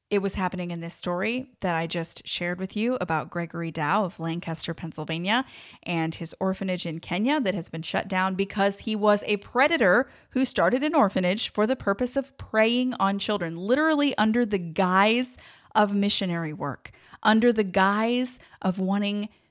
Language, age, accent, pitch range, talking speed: English, 30-49, American, 170-215 Hz, 170 wpm